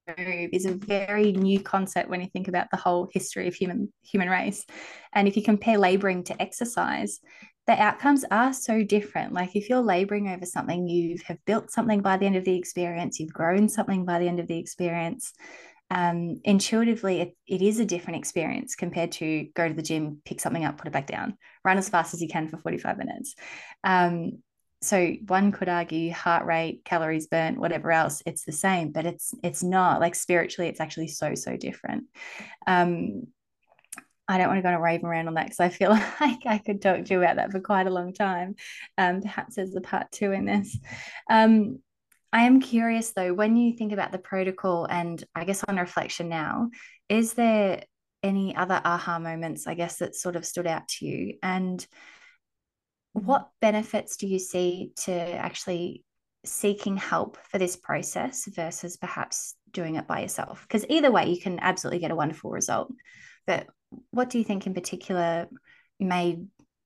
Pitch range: 175-210 Hz